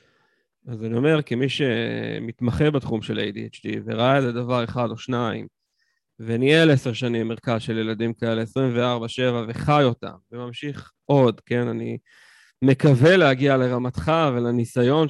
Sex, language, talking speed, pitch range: male, Hebrew, 125 wpm, 120-160 Hz